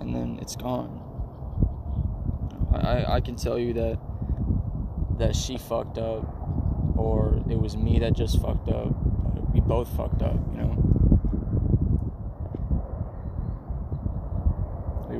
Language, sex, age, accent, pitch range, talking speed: English, male, 20-39, American, 90-115 Hz, 115 wpm